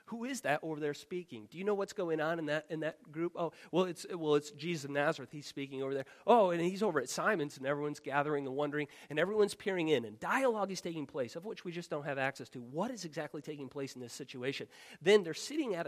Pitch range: 140-190 Hz